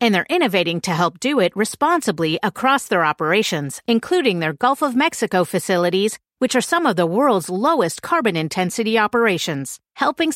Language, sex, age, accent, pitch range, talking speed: English, female, 40-59, American, 170-230 Hz, 160 wpm